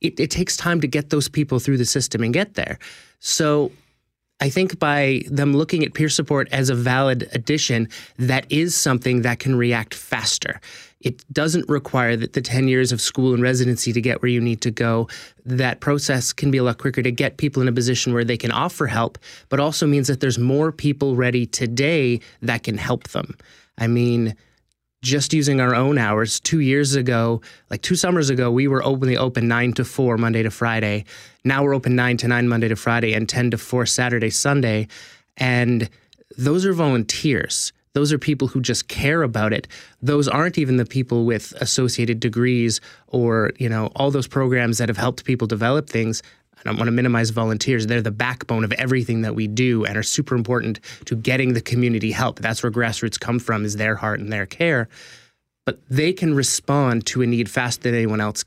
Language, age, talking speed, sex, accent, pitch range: English, 30-49, 205 wpm, male, American, 115-140 Hz